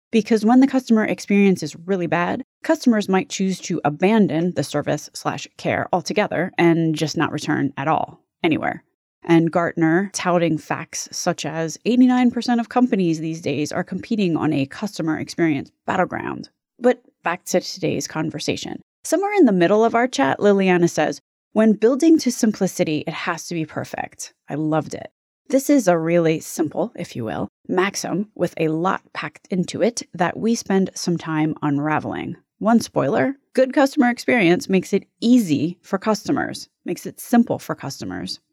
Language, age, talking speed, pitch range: English, 20-39, 160 wpm, 160-225 Hz